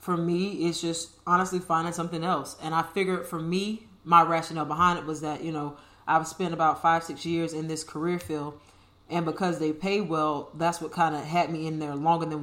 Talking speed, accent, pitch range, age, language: 220 wpm, American, 150-170 Hz, 30-49, English